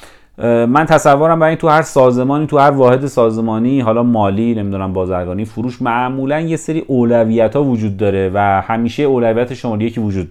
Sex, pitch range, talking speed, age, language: male, 110-130 Hz, 155 wpm, 30-49, Persian